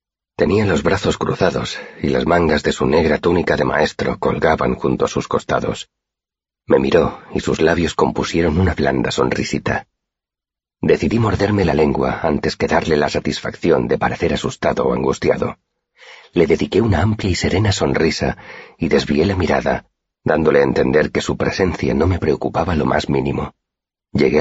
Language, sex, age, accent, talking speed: Spanish, male, 40-59, Spanish, 160 wpm